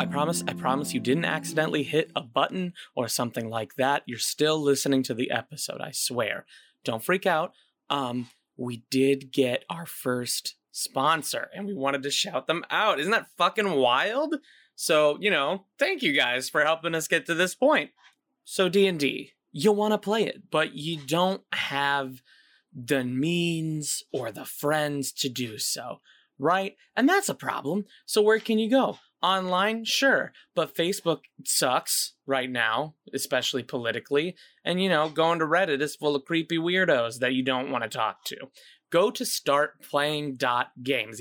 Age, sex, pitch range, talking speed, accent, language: 20-39, male, 135-195 Hz, 165 wpm, American, English